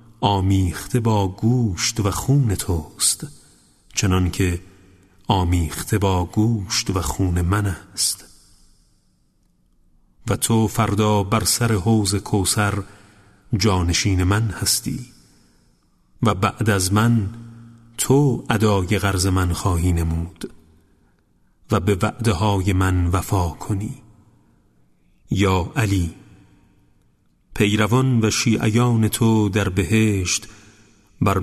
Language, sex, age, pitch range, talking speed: Persian, male, 40-59, 95-110 Hz, 95 wpm